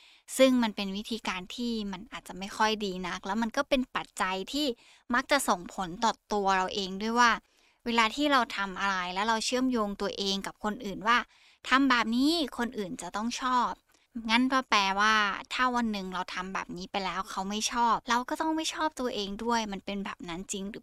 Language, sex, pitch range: Thai, female, 195-235 Hz